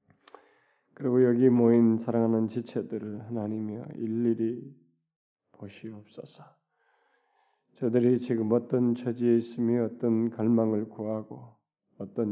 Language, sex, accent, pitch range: Korean, male, native, 105-120 Hz